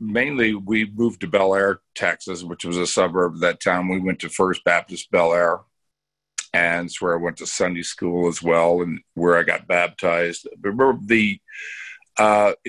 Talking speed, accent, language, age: 185 wpm, American, English, 50-69